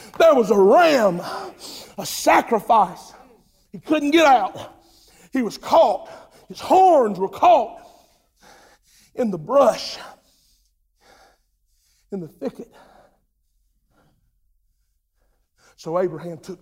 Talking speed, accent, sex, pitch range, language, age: 95 wpm, American, male, 160-210 Hz, English, 50-69